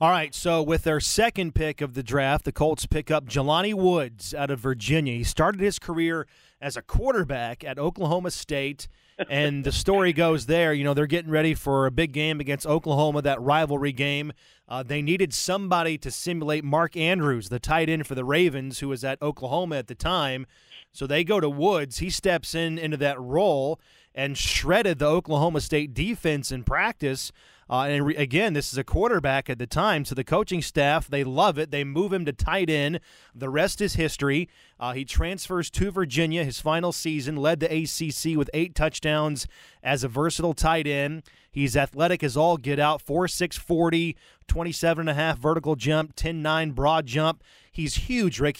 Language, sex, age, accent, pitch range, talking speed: English, male, 30-49, American, 140-165 Hz, 195 wpm